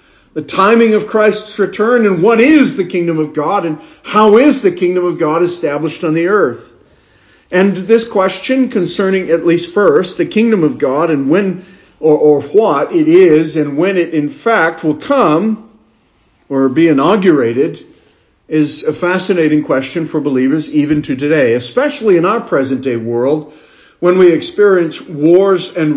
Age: 50-69